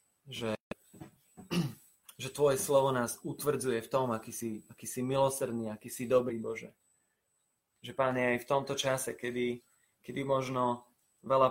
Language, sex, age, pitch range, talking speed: Slovak, male, 30-49, 115-135 Hz, 140 wpm